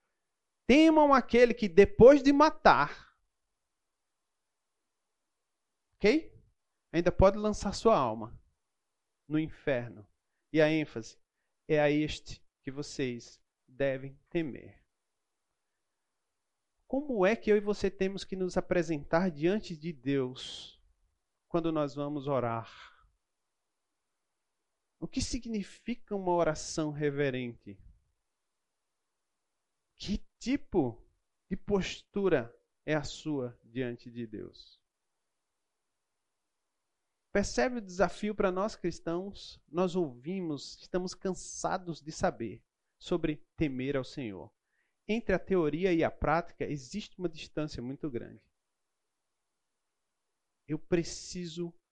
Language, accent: Portuguese, Brazilian